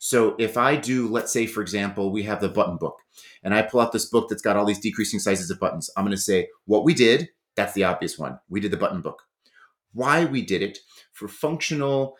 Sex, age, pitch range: male, 30-49, 105-140 Hz